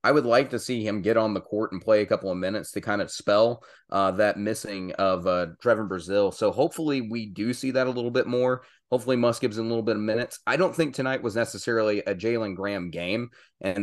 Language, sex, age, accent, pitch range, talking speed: English, male, 30-49, American, 95-115 Hz, 245 wpm